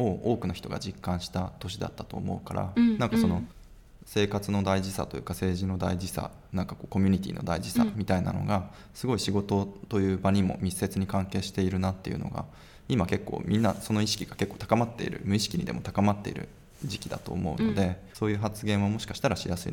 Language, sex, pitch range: Japanese, male, 90-105 Hz